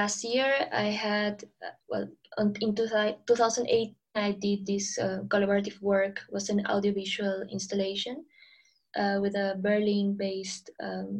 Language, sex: English, female